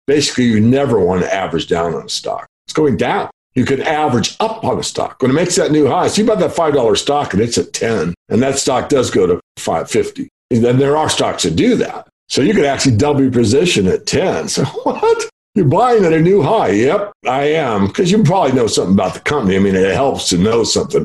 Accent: American